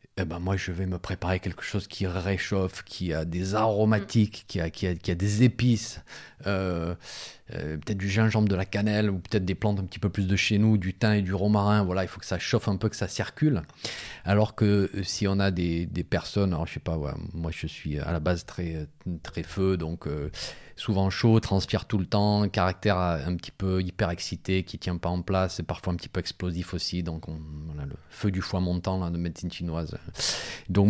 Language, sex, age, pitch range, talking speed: French, male, 40-59, 90-105 Hz, 230 wpm